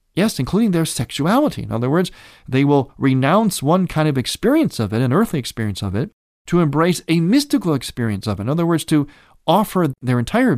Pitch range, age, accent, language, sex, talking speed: 115-165 Hz, 40-59, American, English, male, 200 wpm